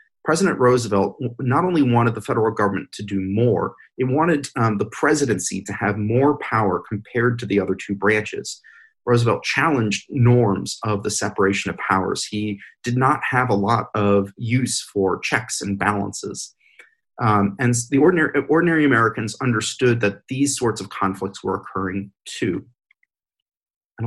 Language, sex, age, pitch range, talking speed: English, male, 30-49, 100-125 Hz, 155 wpm